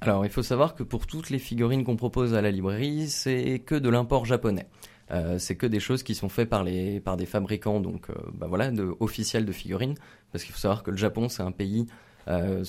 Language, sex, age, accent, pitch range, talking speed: French, male, 20-39, French, 95-115 Hz, 240 wpm